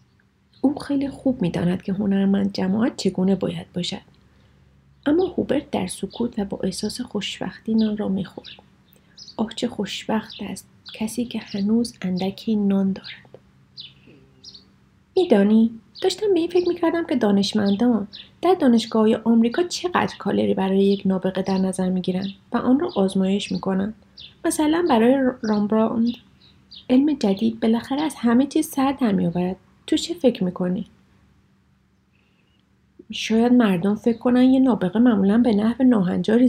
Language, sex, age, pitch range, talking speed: Persian, female, 30-49, 195-250 Hz, 135 wpm